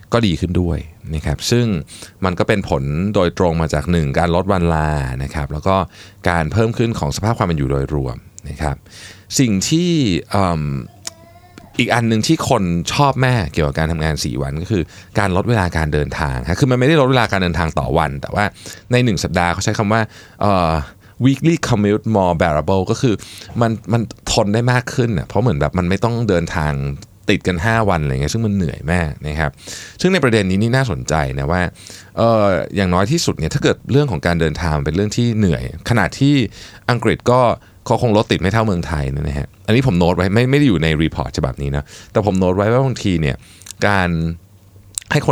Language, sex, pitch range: Thai, male, 80-115 Hz